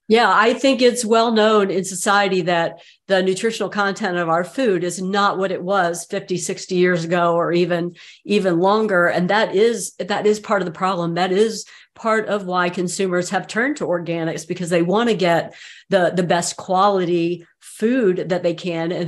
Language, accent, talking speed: English, American, 190 wpm